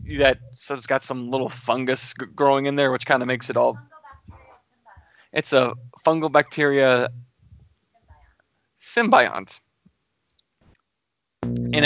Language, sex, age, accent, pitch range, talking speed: English, male, 20-39, American, 100-135 Hz, 115 wpm